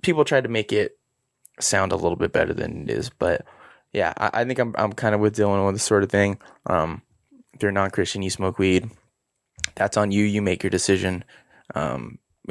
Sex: male